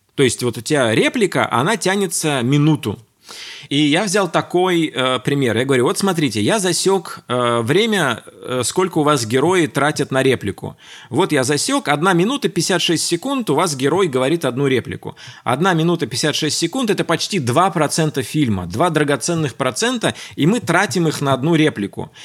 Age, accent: 20-39, native